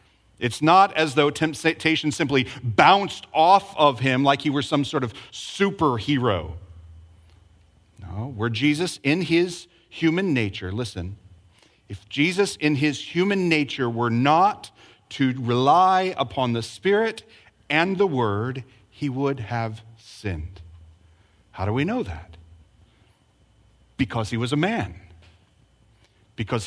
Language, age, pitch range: English, 40-59, 105-165 Hz